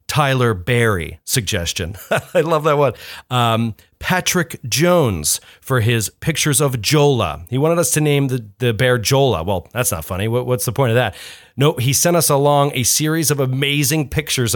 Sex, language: male, English